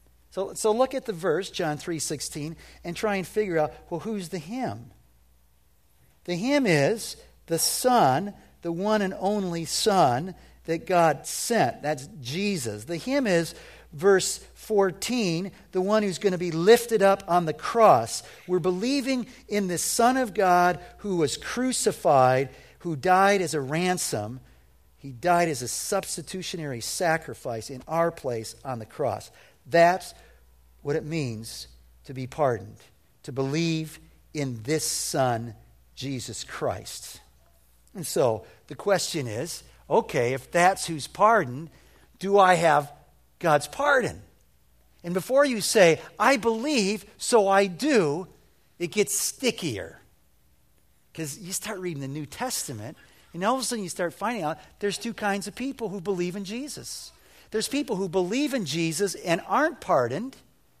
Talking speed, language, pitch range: 150 wpm, English, 135-205 Hz